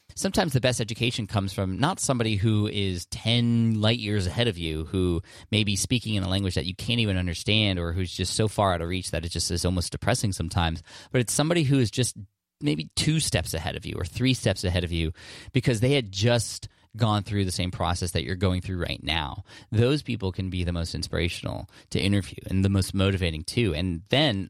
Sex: male